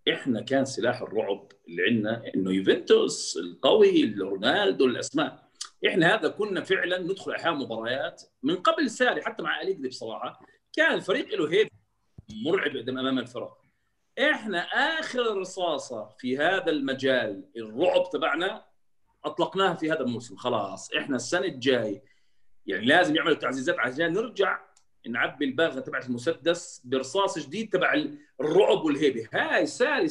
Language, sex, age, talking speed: Arabic, male, 40-59, 130 wpm